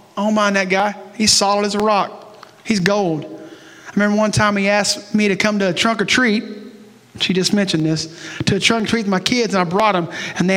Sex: male